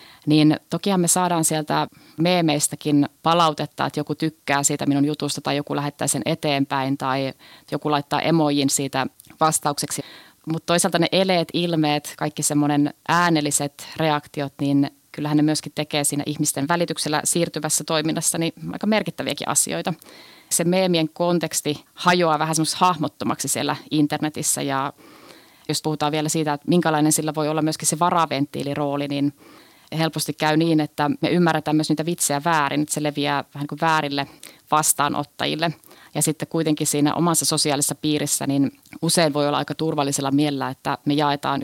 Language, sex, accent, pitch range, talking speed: Finnish, female, native, 145-160 Hz, 150 wpm